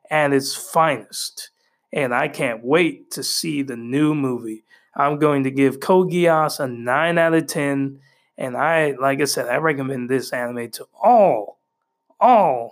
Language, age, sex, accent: English, 20-39, male, American